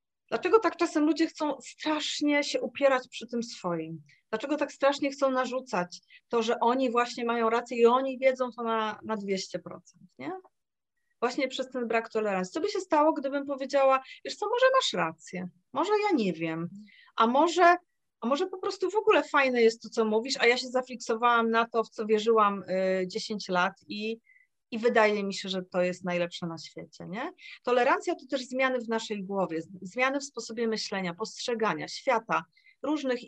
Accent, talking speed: native, 180 wpm